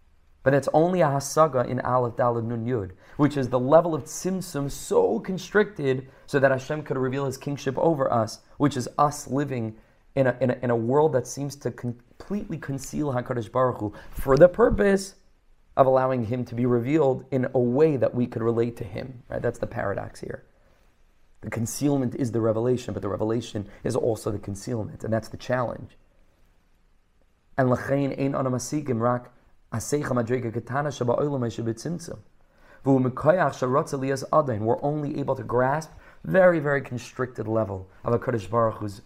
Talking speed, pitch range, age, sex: 155 wpm, 115-140 Hz, 30-49, male